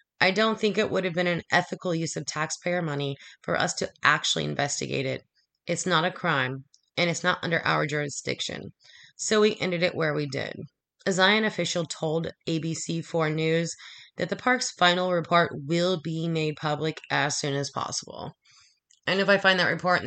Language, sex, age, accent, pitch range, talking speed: English, female, 20-39, American, 155-185 Hz, 190 wpm